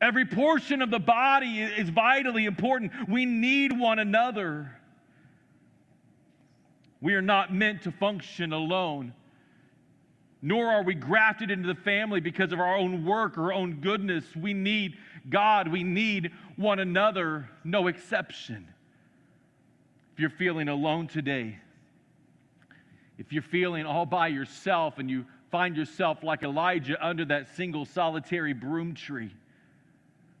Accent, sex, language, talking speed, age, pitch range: American, male, English, 130 wpm, 40-59, 145-190 Hz